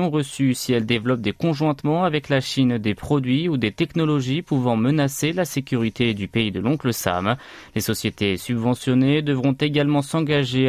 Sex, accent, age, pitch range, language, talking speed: male, French, 30-49, 120-145 Hz, French, 165 wpm